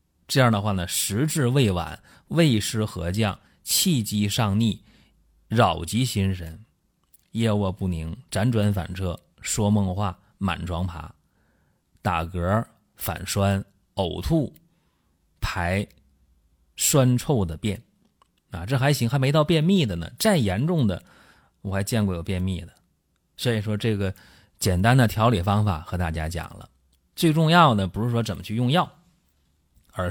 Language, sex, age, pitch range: Chinese, male, 30-49, 85-115 Hz